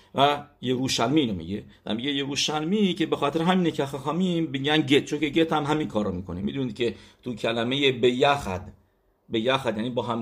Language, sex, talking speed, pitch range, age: English, male, 195 wpm, 100-135 Hz, 50-69